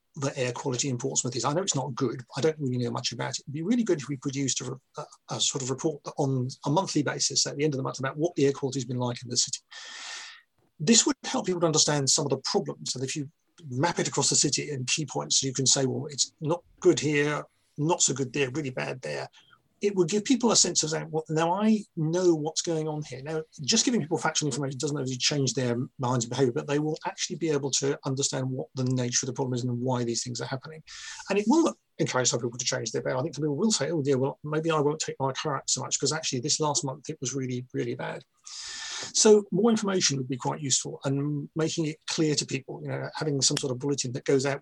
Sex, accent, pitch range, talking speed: male, British, 135-165 Hz, 265 wpm